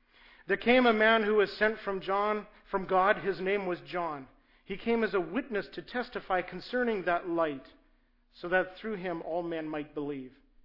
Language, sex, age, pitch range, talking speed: English, male, 50-69, 165-210 Hz, 185 wpm